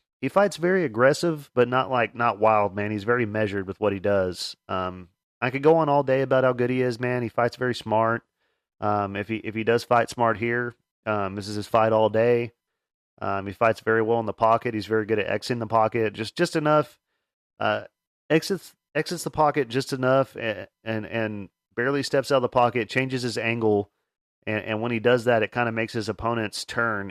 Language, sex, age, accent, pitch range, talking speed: English, male, 30-49, American, 105-125 Hz, 220 wpm